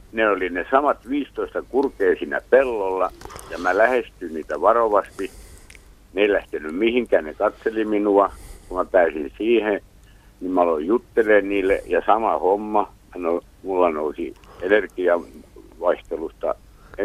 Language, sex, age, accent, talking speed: Finnish, male, 60-79, native, 115 wpm